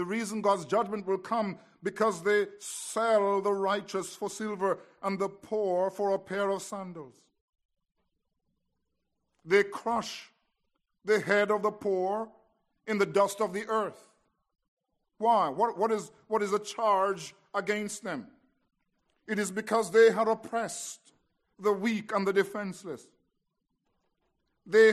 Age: 50-69